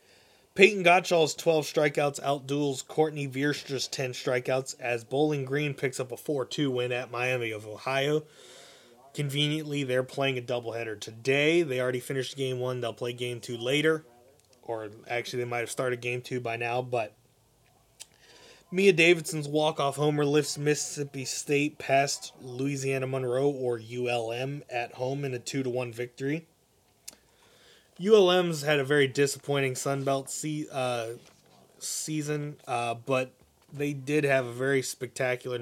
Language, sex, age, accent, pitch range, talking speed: English, male, 20-39, American, 125-150 Hz, 140 wpm